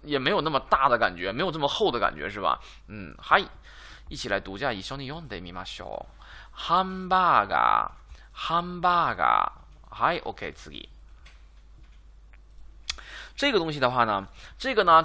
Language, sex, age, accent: Chinese, male, 20-39, native